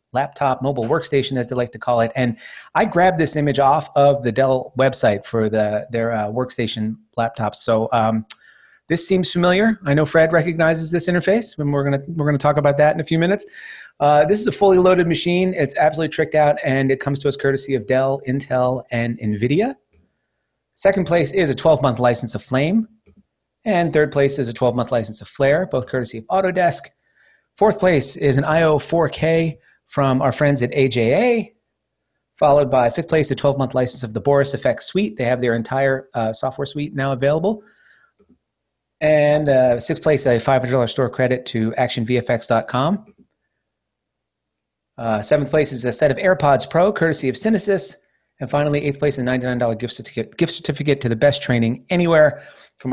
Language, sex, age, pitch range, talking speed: English, male, 30-49, 125-160 Hz, 180 wpm